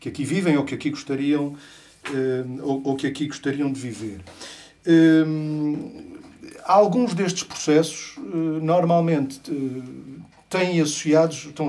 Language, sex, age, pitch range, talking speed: Portuguese, male, 50-69, 135-180 Hz, 75 wpm